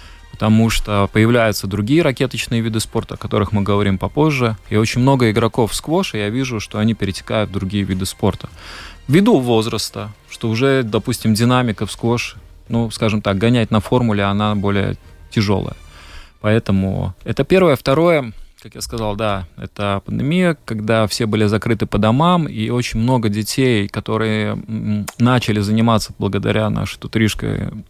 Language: Russian